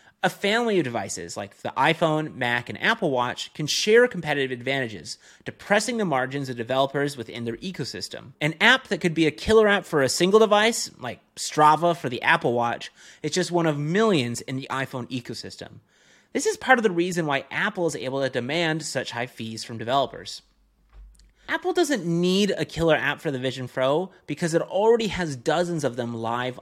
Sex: male